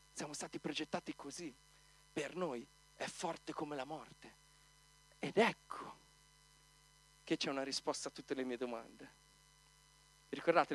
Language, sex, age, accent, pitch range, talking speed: Italian, male, 40-59, native, 145-165 Hz, 130 wpm